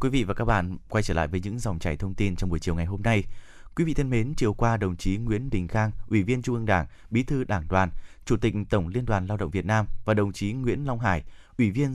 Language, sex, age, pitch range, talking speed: Vietnamese, male, 20-39, 95-125 Hz, 285 wpm